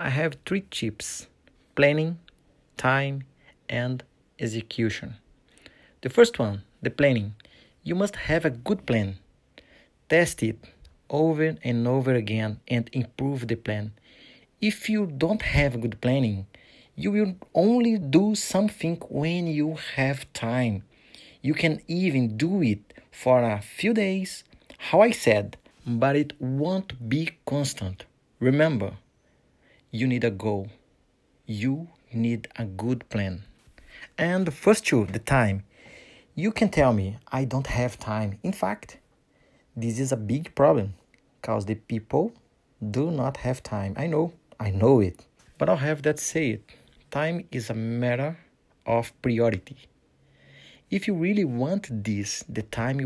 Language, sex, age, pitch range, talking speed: Portuguese, male, 30-49, 115-155 Hz, 140 wpm